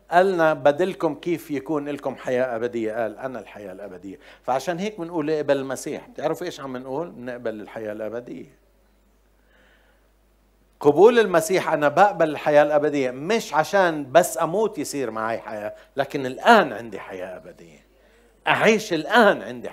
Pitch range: 110-155 Hz